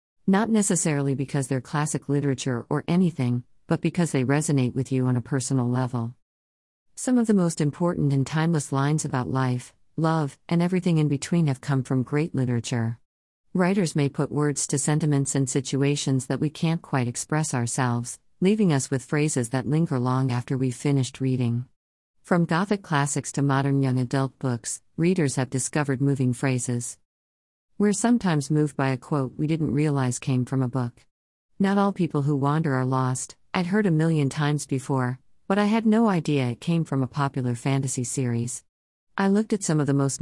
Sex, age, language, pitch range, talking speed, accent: female, 50-69, English, 130-155 Hz, 180 wpm, American